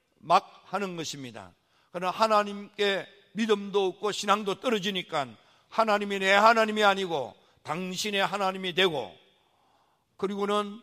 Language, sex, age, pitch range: Korean, male, 50-69, 180-210 Hz